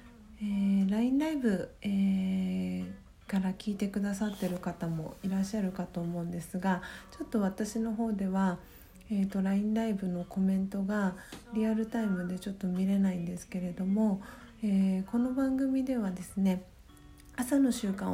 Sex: female